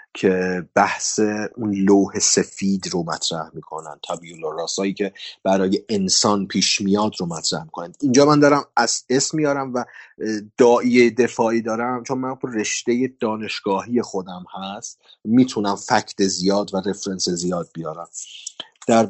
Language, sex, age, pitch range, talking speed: Persian, male, 30-49, 100-130 Hz, 140 wpm